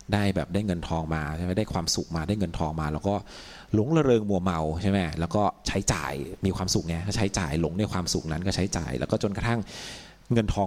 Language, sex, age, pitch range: Thai, male, 30-49, 90-115 Hz